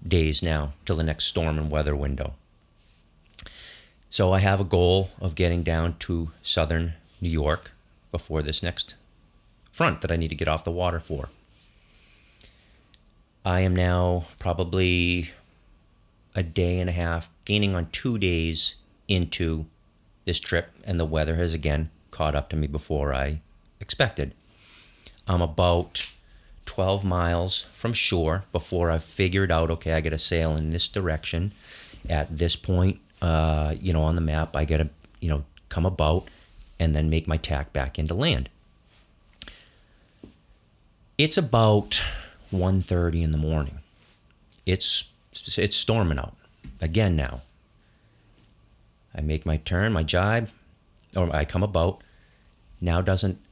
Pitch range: 80-95 Hz